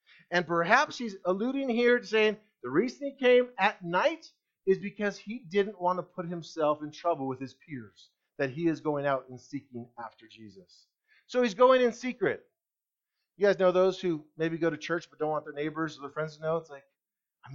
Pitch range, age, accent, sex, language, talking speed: 155-235 Hz, 40-59, American, male, English, 210 wpm